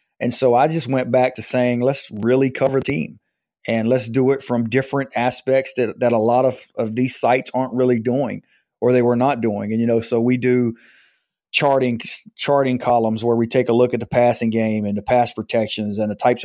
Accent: American